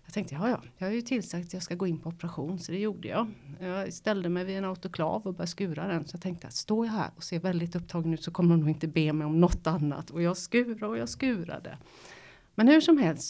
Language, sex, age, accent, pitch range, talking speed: Swedish, female, 30-49, native, 165-205 Hz, 270 wpm